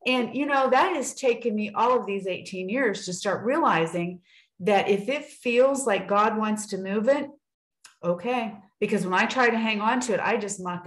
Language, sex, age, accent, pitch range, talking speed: English, female, 40-59, American, 190-250 Hz, 210 wpm